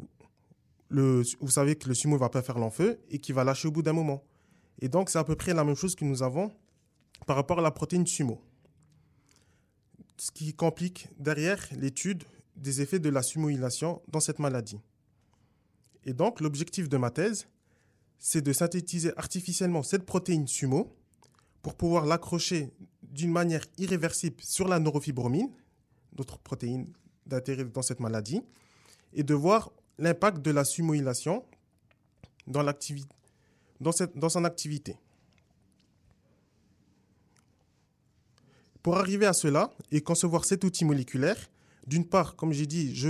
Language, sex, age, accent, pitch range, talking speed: French, male, 20-39, French, 130-170 Hz, 145 wpm